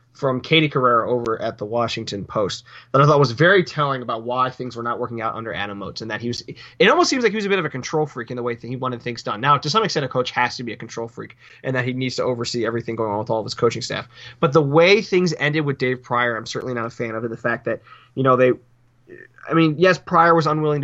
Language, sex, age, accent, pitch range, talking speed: English, male, 20-39, American, 120-145 Hz, 295 wpm